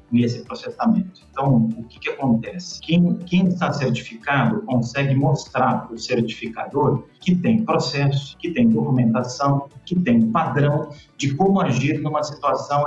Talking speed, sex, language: 140 wpm, male, Portuguese